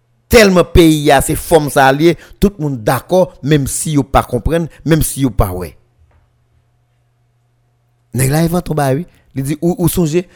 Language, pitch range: French, 115-160 Hz